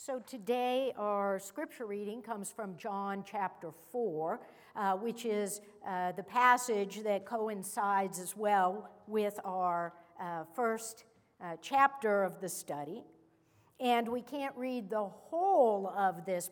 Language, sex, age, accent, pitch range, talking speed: English, female, 60-79, American, 195-290 Hz, 135 wpm